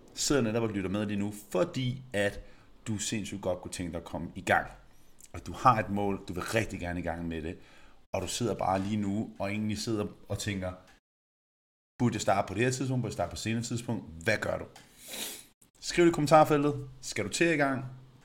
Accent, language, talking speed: native, Danish, 220 wpm